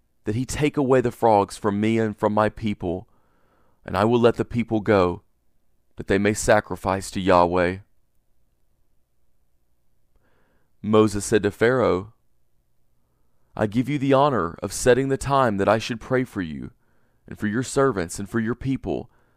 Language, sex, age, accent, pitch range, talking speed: English, male, 40-59, American, 85-125 Hz, 160 wpm